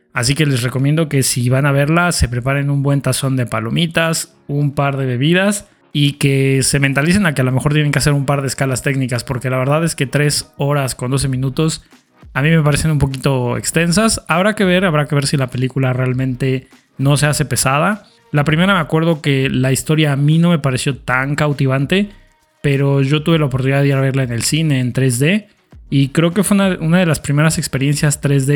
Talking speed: 225 wpm